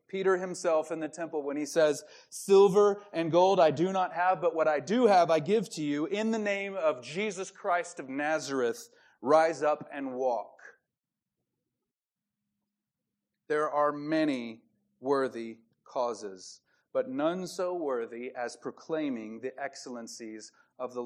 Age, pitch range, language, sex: 30-49, 140-195 Hz, English, male